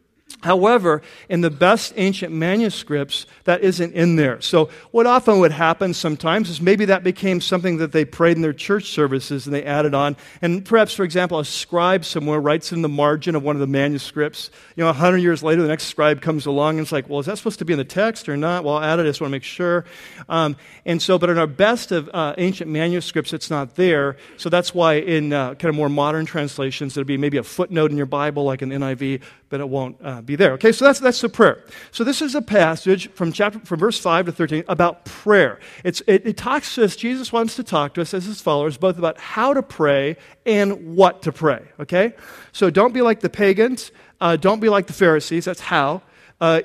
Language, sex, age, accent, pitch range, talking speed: English, male, 40-59, American, 150-190 Hz, 235 wpm